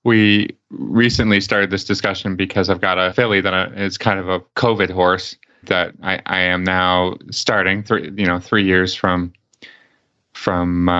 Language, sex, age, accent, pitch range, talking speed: English, male, 30-49, American, 90-100 Hz, 165 wpm